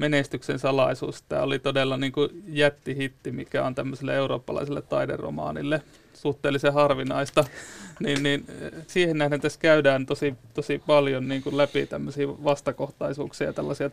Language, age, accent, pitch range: Finnish, 30-49, native, 135-145 Hz